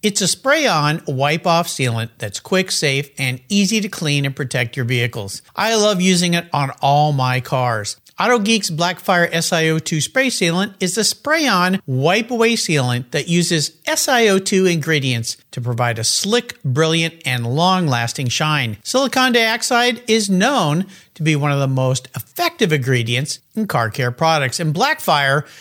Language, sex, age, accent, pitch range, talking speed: English, male, 50-69, American, 135-210 Hz, 150 wpm